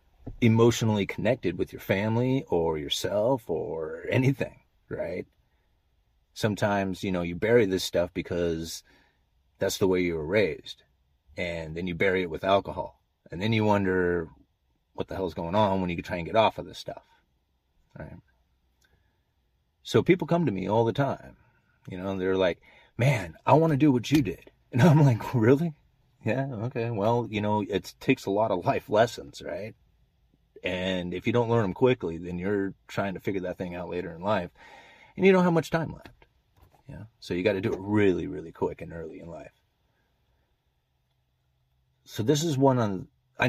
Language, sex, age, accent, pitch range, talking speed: English, male, 30-49, American, 85-120 Hz, 185 wpm